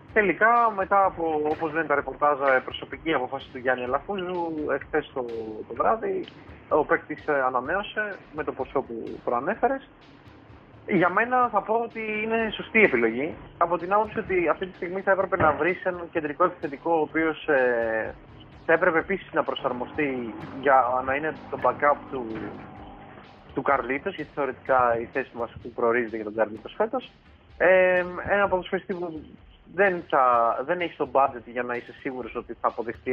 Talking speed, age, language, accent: 160 wpm, 20-39, Greek, native